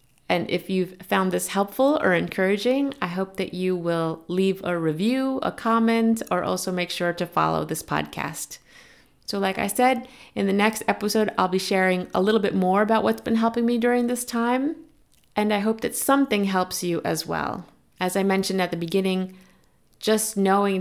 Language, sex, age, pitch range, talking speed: English, female, 30-49, 180-220 Hz, 190 wpm